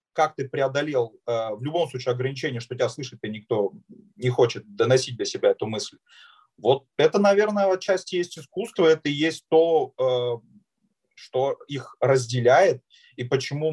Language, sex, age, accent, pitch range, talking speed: Russian, male, 30-49, native, 125-180 Hz, 150 wpm